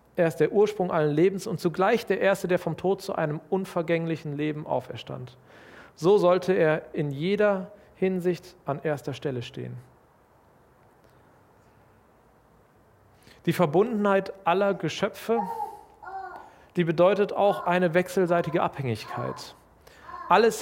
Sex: male